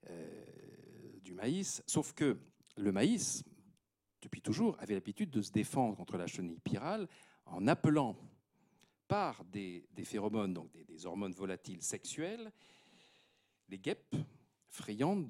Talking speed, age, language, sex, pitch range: 130 wpm, 50-69, French, male, 95-155 Hz